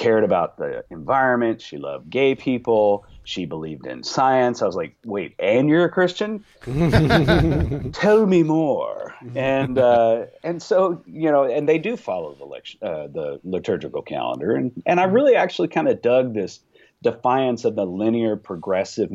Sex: male